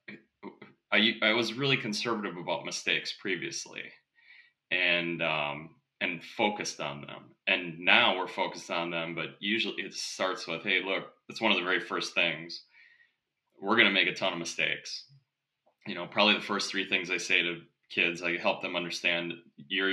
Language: English